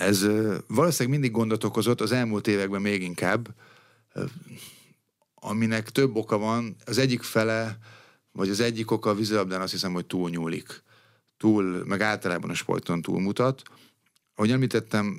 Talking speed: 140 wpm